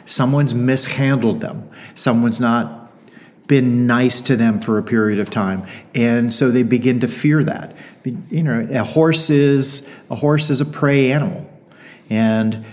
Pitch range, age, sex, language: 120-150 Hz, 40-59, male, English